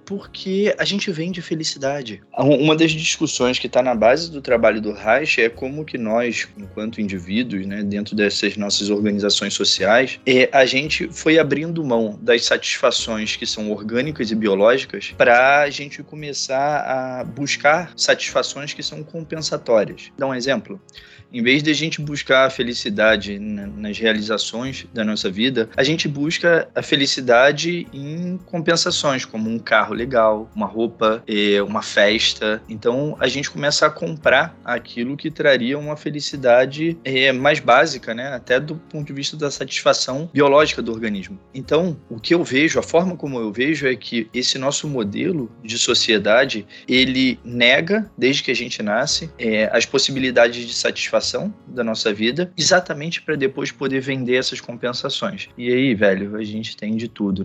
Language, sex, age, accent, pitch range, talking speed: Portuguese, male, 20-39, Brazilian, 110-150 Hz, 160 wpm